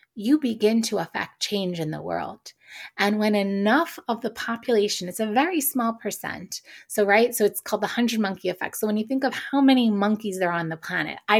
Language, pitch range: English, 180-225 Hz